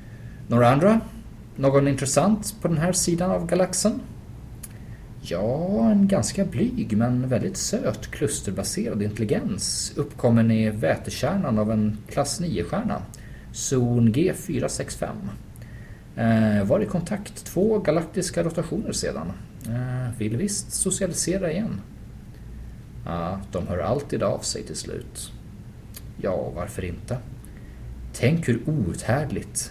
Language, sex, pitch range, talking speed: Swedish, male, 105-145 Hz, 115 wpm